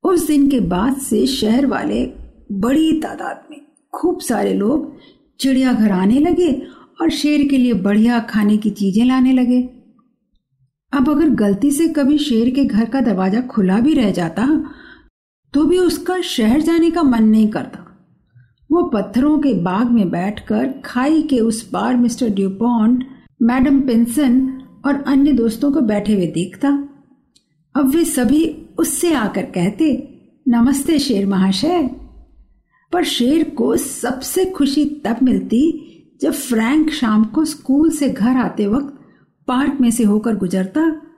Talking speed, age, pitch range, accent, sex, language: 145 wpm, 50-69, 225-300 Hz, native, female, Hindi